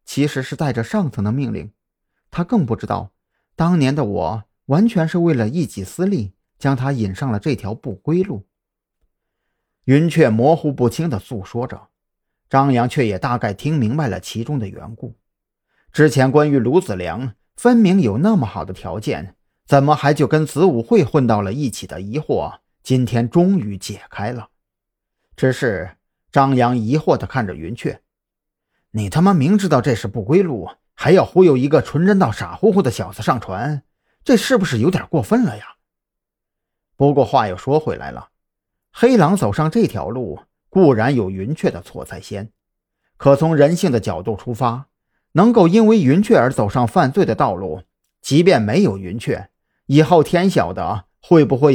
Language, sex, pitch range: Chinese, male, 110-160 Hz